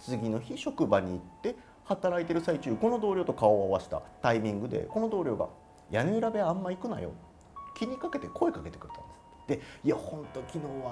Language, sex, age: Japanese, male, 30-49